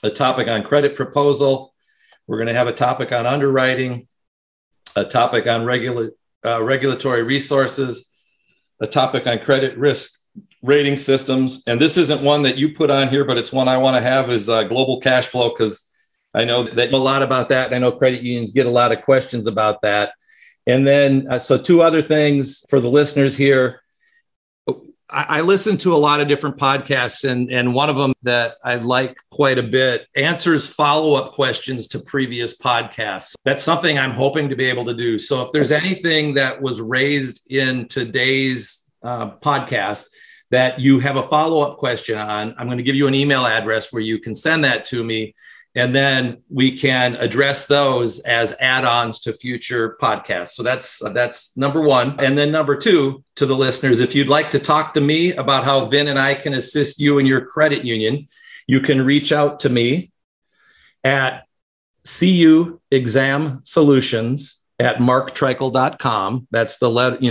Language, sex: English, male